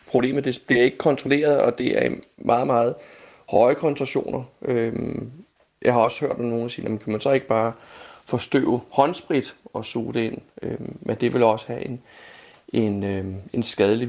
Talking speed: 170 wpm